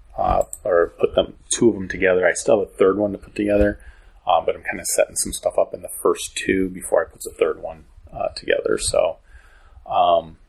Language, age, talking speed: English, 30-49, 230 wpm